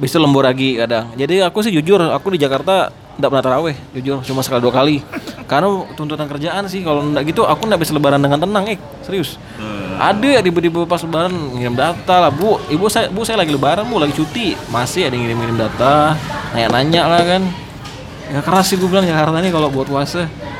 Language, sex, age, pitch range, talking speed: Indonesian, male, 20-39, 130-175 Hz, 200 wpm